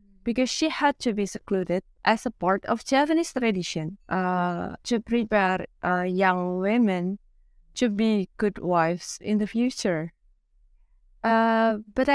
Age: 20-39